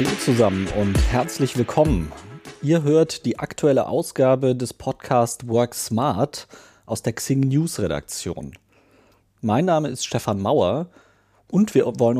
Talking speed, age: 135 wpm, 40-59